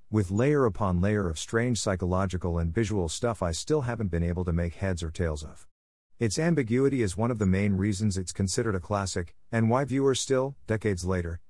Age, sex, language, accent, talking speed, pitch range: 50-69, male, English, American, 205 wpm, 85-115 Hz